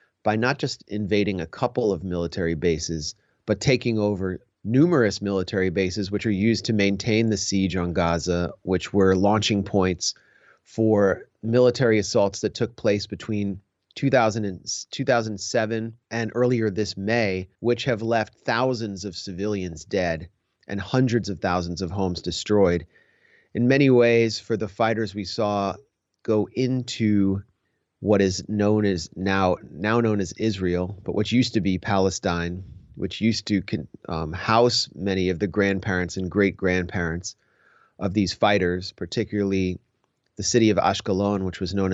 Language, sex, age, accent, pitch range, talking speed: English, male, 30-49, American, 95-110 Hz, 145 wpm